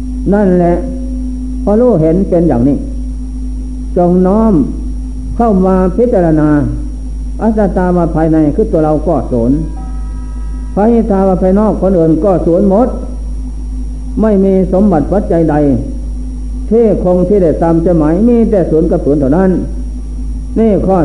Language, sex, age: Thai, male, 60-79